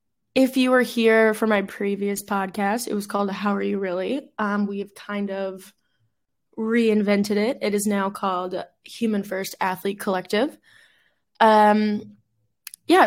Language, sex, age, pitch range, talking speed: English, female, 20-39, 195-215 Hz, 145 wpm